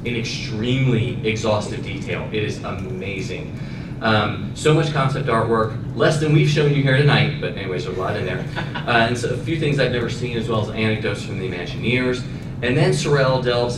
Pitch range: 110-135 Hz